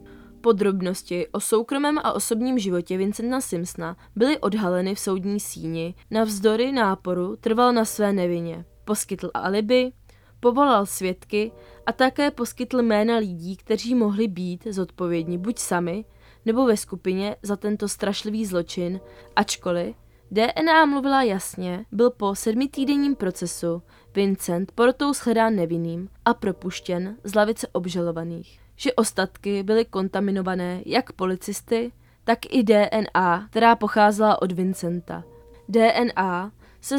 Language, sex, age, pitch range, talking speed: Czech, female, 20-39, 180-225 Hz, 120 wpm